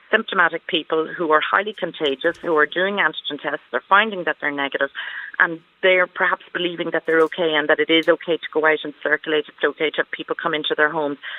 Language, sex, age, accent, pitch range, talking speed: English, female, 40-59, Irish, 155-185 Hz, 225 wpm